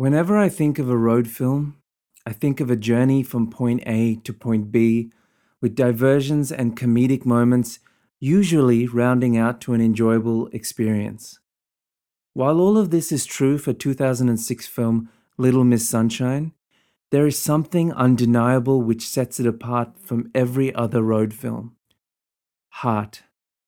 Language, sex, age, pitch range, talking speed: English, male, 20-39, 115-135 Hz, 140 wpm